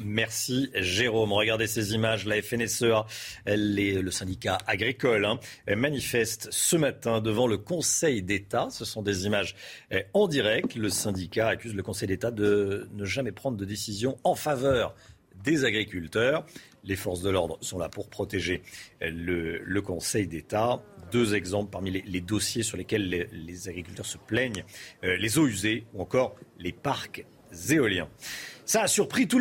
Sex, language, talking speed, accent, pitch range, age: male, French, 165 wpm, French, 100-135 Hz, 50-69